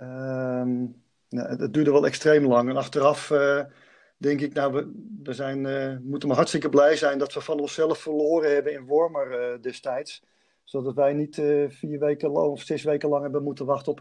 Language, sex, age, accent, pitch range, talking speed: Dutch, male, 50-69, Dutch, 125-145 Hz, 200 wpm